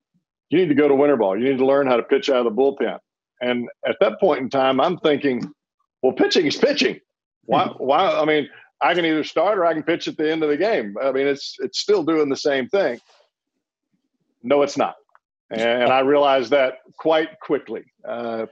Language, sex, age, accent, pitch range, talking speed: English, male, 50-69, American, 125-145 Hz, 220 wpm